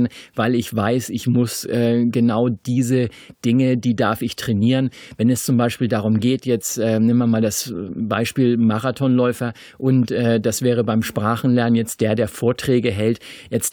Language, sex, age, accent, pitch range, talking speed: German, male, 50-69, German, 115-125 Hz, 170 wpm